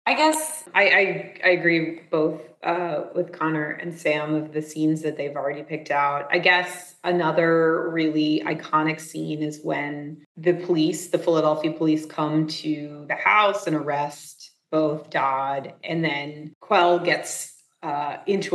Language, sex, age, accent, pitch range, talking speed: English, female, 30-49, American, 155-180 Hz, 150 wpm